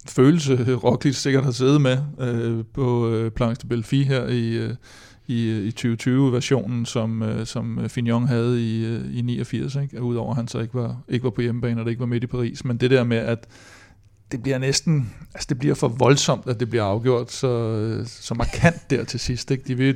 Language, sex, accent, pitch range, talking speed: Danish, male, native, 115-130 Hz, 215 wpm